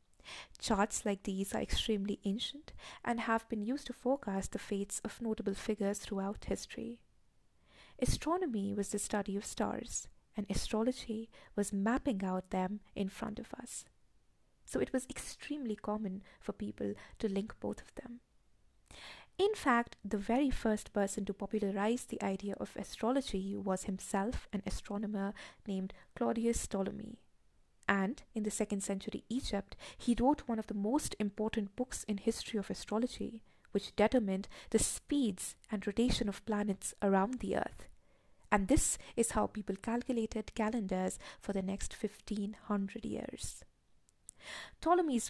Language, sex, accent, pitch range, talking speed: English, female, Indian, 200-235 Hz, 145 wpm